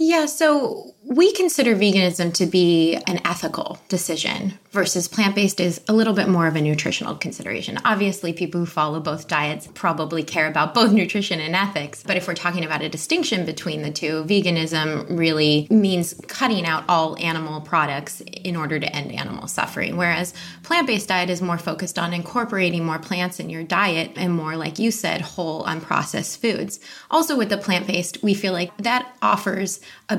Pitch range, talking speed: 165-215 Hz, 185 wpm